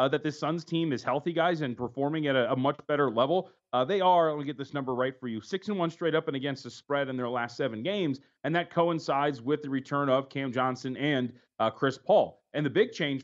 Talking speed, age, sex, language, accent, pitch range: 255 wpm, 30-49, male, English, American, 130-160 Hz